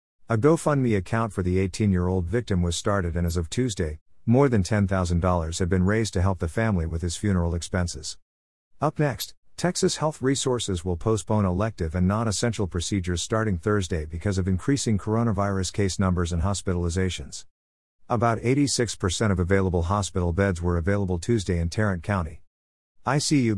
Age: 50-69